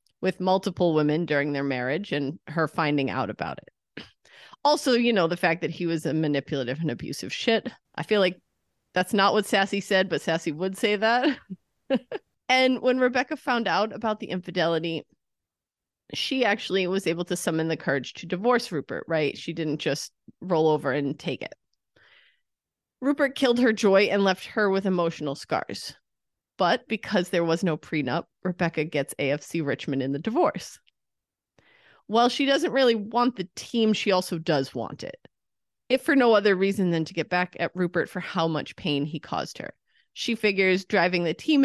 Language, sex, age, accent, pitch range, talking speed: English, female, 30-49, American, 155-210 Hz, 180 wpm